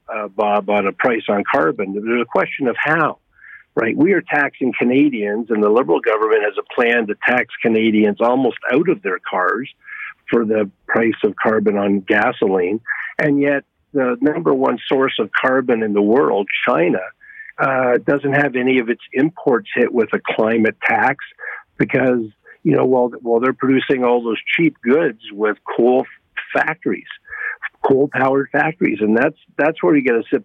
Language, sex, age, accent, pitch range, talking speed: English, male, 50-69, American, 115-145 Hz, 175 wpm